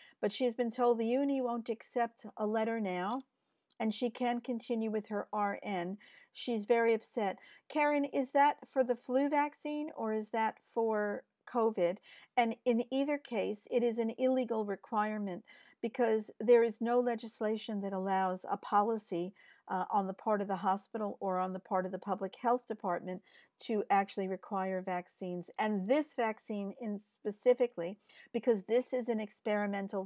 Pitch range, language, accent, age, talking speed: 195-245 Hz, English, American, 50-69, 165 wpm